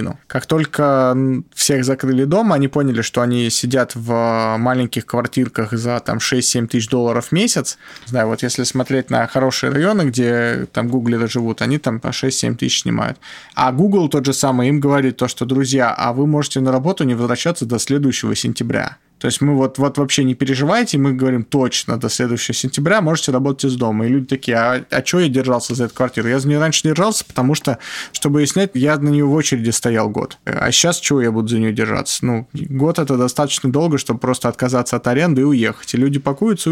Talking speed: 210 wpm